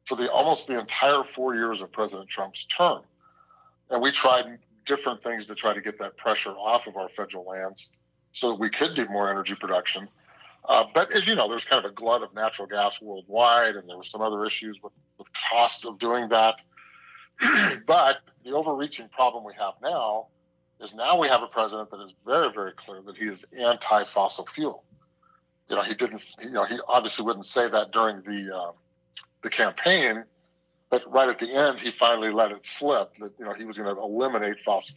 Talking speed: 205 wpm